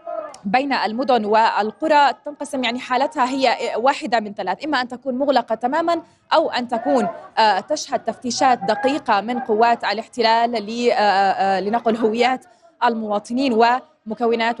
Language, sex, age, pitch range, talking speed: Arabic, female, 20-39, 215-260 Hz, 115 wpm